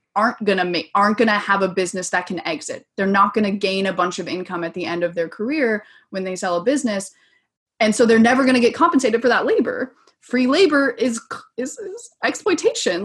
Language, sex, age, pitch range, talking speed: English, female, 20-39, 185-235 Hz, 230 wpm